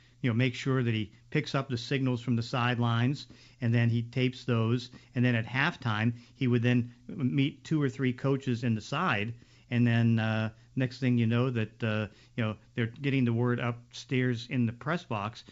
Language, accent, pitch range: English, American, 115-130 Hz